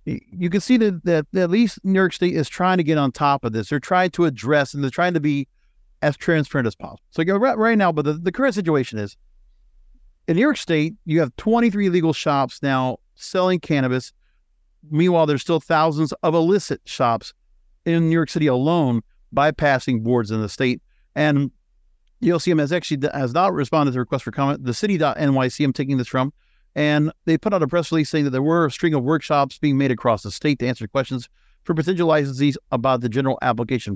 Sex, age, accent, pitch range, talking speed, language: male, 50-69, American, 130-170 Hz, 215 wpm, English